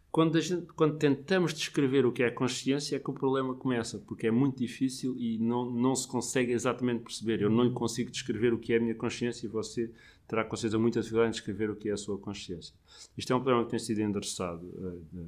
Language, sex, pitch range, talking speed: Portuguese, male, 105-125 Hz, 245 wpm